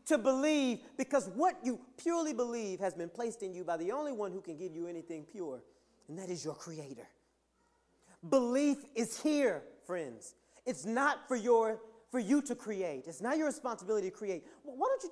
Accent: American